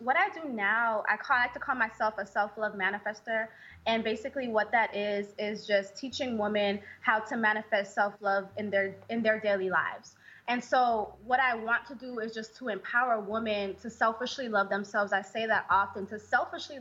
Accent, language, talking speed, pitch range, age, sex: American, English, 185 wpm, 205-245 Hz, 20-39, female